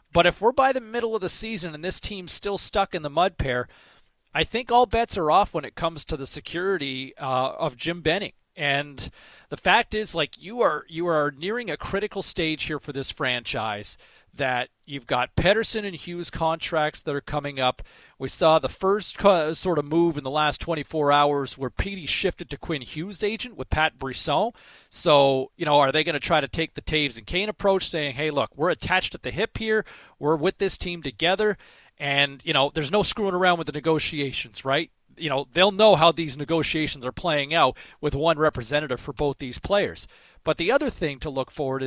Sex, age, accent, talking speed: male, 40-59, American, 210 wpm